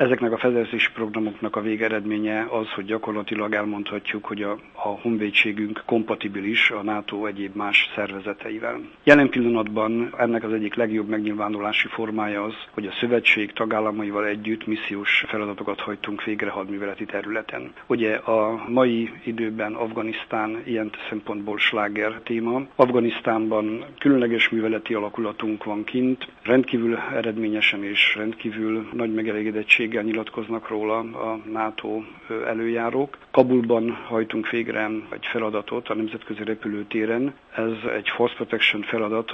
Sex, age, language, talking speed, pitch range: male, 50-69, Hungarian, 120 wpm, 105-115 Hz